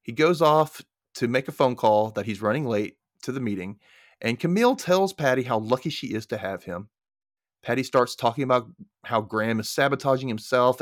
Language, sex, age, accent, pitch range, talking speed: English, male, 30-49, American, 115-170 Hz, 195 wpm